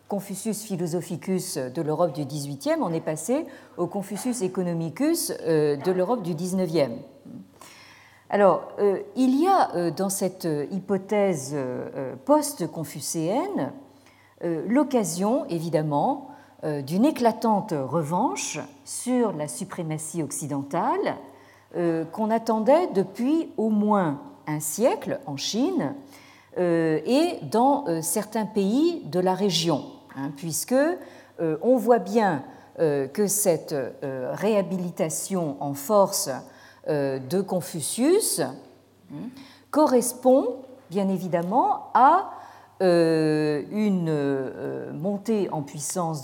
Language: French